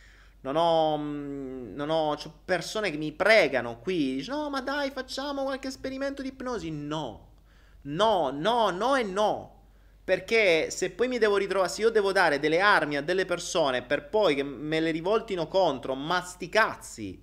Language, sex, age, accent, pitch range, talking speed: Italian, male, 30-49, native, 115-170 Hz, 165 wpm